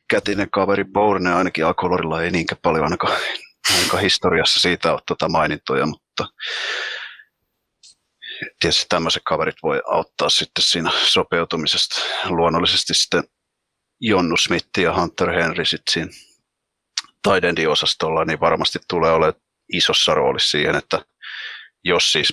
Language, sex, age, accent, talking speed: Finnish, male, 30-49, native, 120 wpm